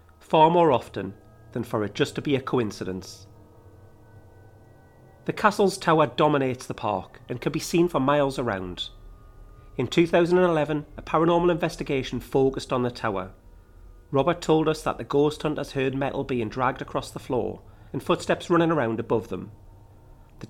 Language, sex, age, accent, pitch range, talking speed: English, male, 40-59, British, 110-150 Hz, 160 wpm